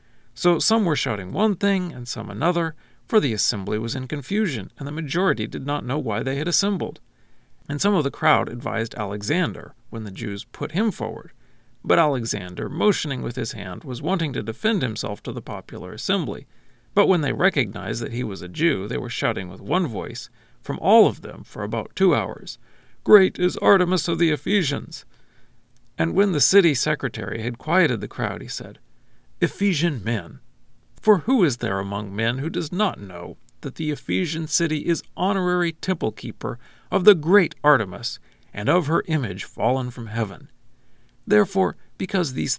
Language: English